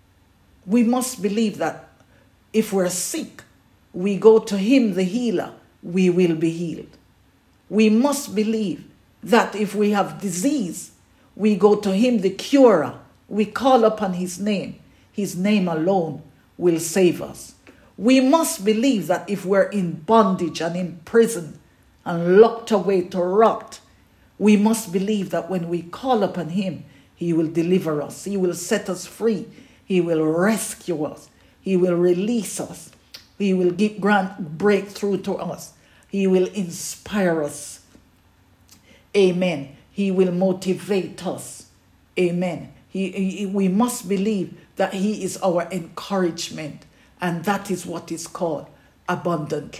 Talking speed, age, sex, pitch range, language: 140 wpm, 50-69, female, 175-215 Hz, English